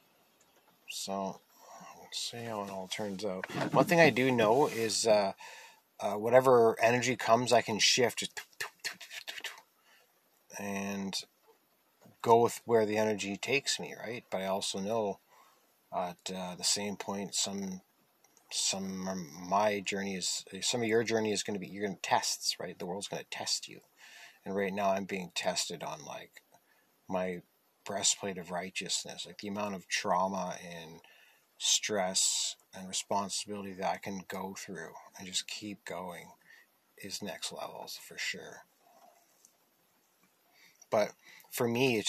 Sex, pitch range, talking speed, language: male, 95-110 Hz, 150 wpm, English